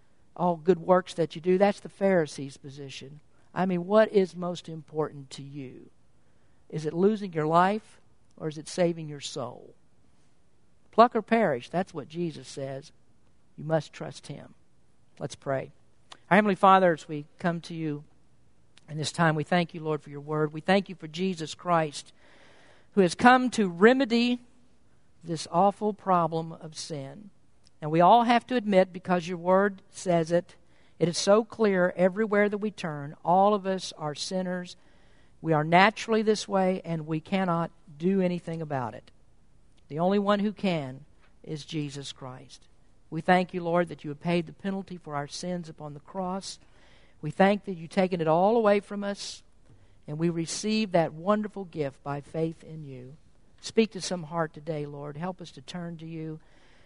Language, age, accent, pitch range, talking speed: English, 50-69, American, 150-190 Hz, 175 wpm